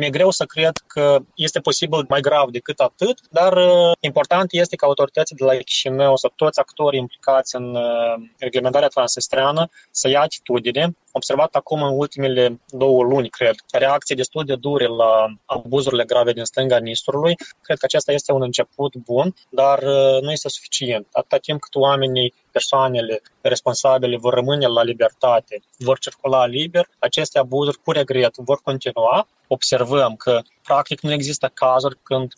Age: 20-39